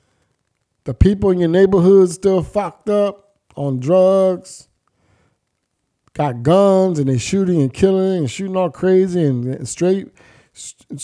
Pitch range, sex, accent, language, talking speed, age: 115-180 Hz, male, American, English, 125 wpm, 50-69